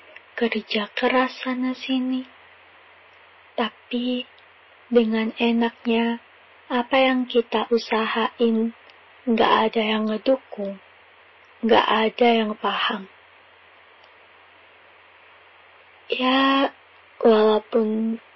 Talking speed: 65 wpm